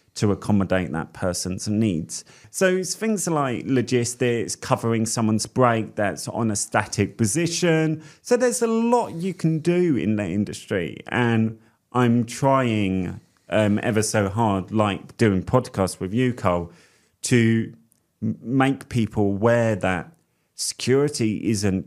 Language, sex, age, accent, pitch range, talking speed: English, male, 30-49, British, 95-125 Hz, 130 wpm